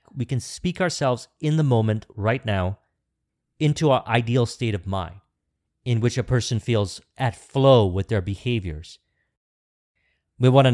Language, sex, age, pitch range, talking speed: English, male, 40-59, 105-125 Hz, 150 wpm